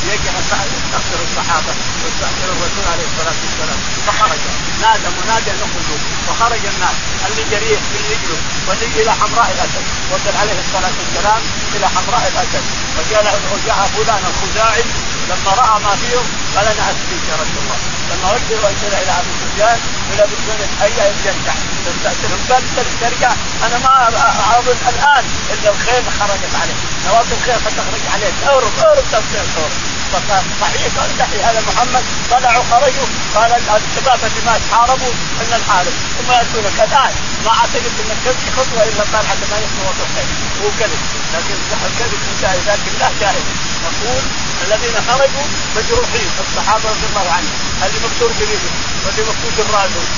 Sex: male